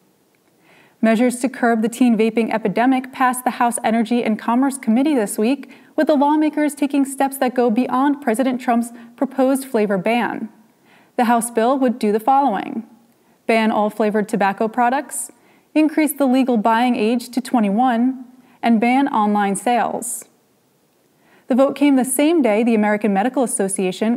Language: English